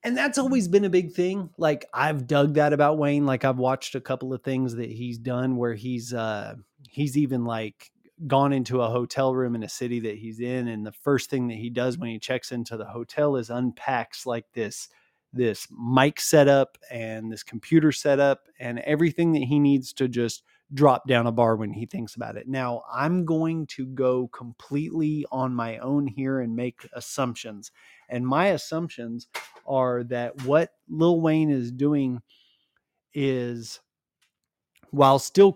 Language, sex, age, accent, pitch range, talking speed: English, male, 20-39, American, 120-145 Hz, 180 wpm